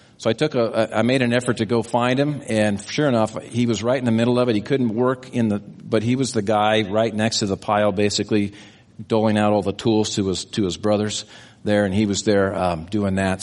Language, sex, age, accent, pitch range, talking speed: English, male, 50-69, American, 105-125 Hz, 255 wpm